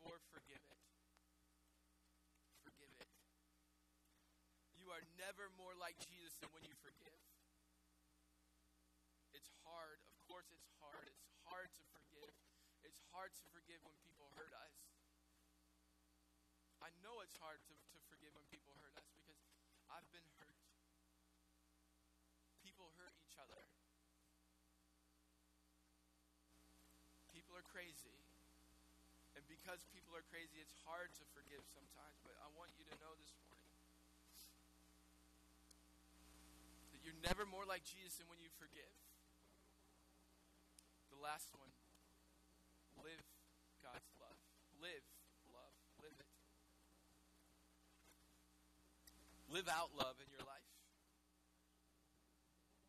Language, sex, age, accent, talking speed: English, male, 20-39, American, 110 wpm